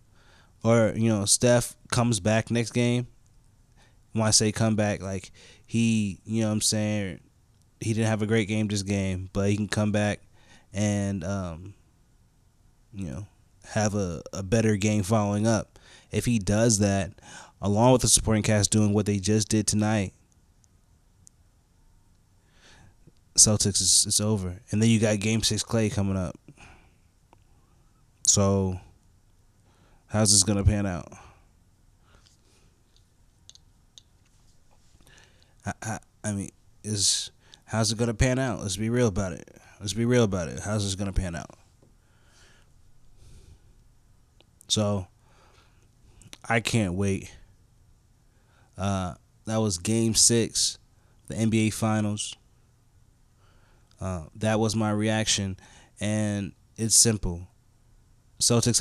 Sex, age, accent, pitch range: male, 20-39, American, 100-115 Hz